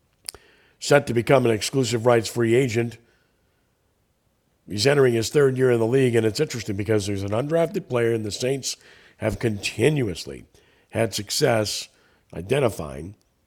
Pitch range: 105-145 Hz